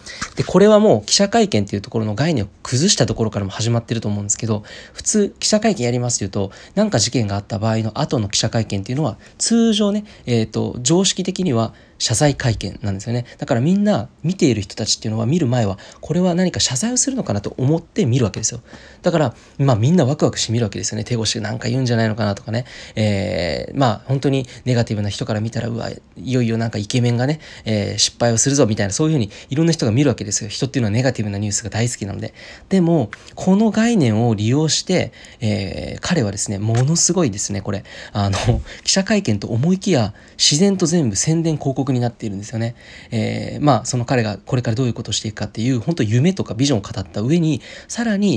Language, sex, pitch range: Japanese, male, 110-145 Hz